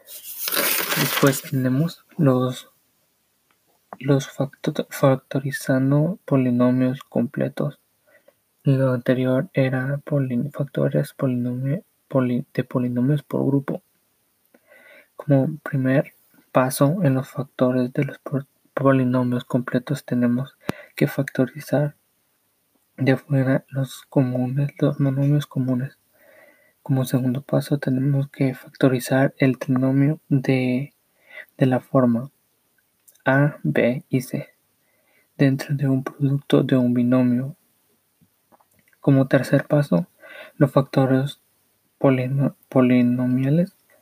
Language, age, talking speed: English, 20-39, 95 wpm